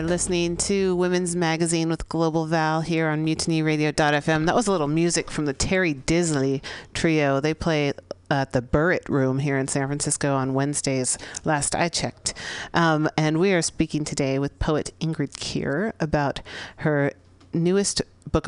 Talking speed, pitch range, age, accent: 160 wpm, 135-160 Hz, 40-59, American